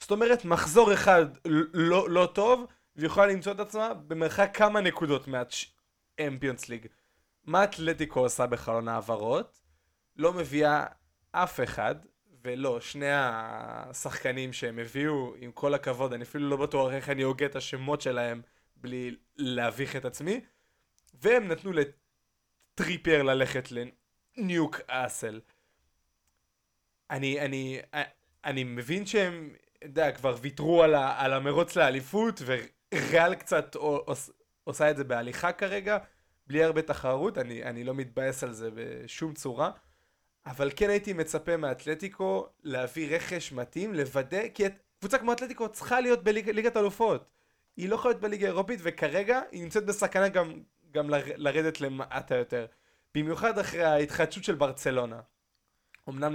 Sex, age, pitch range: male, 20-39, 130-195 Hz